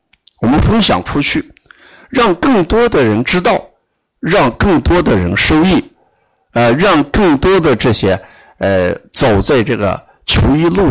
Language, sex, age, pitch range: Chinese, male, 50-69, 95-115 Hz